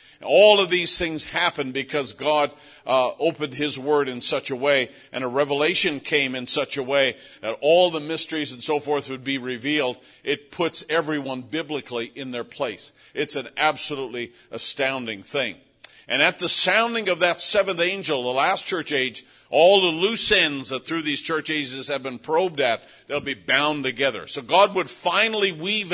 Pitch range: 145-195 Hz